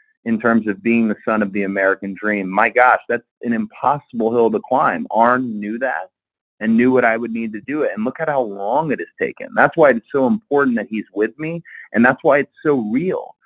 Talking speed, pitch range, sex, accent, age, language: 235 wpm, 105-135 Hz, male, American, 30-49, English